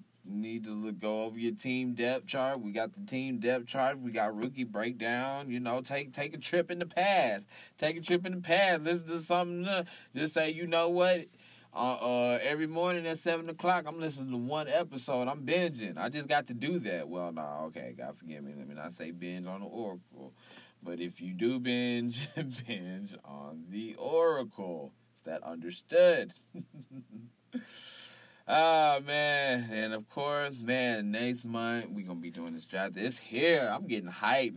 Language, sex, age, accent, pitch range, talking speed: English, male, 20-39, American, 100-150 Hz, 190 wpm